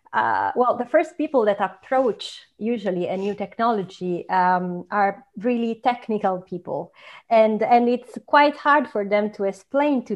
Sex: female